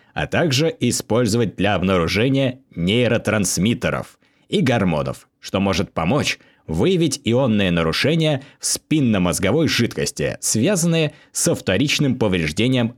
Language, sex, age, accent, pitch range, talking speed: Russian, male, 20-39, native, 90-140 Hz, 95 wpm